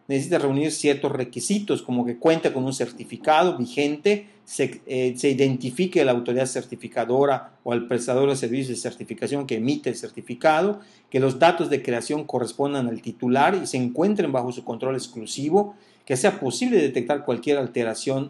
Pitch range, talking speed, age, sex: 125-170 Hz, 165 wpm, 40-59, male